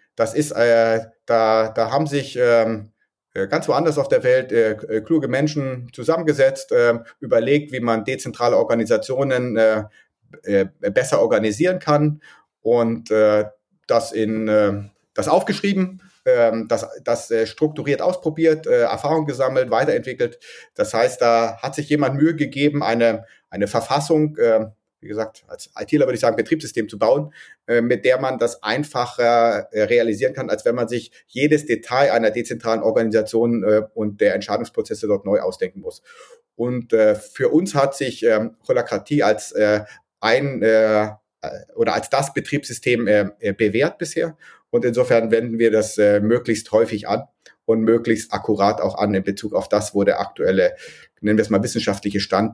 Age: 30-49